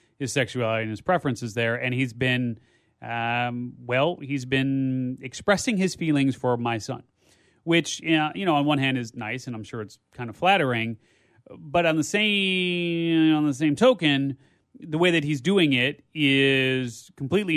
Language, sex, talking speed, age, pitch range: English, male, 180 wpm, 30-49, 125-155 Hz